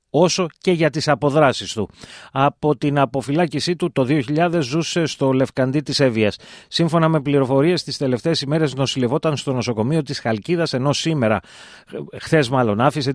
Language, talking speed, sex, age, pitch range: Greek, 150 wpm, male, 30-49, 125-155 Hz